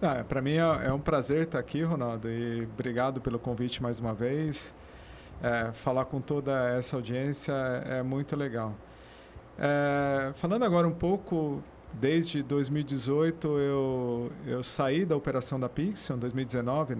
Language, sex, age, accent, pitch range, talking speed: Portuguese, male, 40-59, Brazilian, 130-160 Hz, 140 wpm